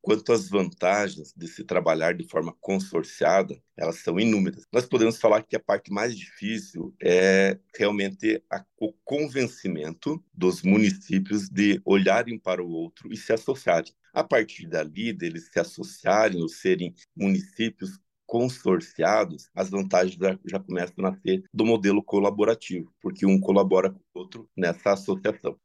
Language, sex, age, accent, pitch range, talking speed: Portuguese, male, 50-69, Brazilian, 95-115 Hz, 145 wpm